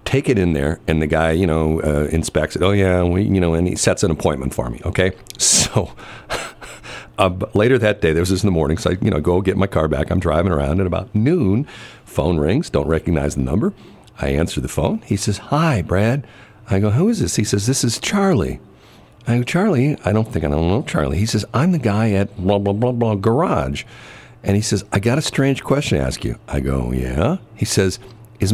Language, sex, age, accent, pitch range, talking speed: English, male, 50-69, American, 95-125 Hz, 235 wpm